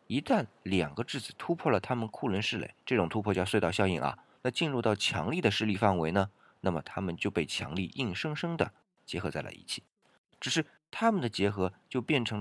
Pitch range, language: 95-135 Hz, Chinese